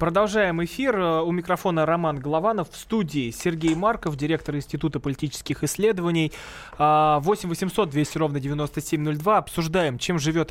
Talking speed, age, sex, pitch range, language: 120 wpm, 20-39, male, 145-185 Hz, Russian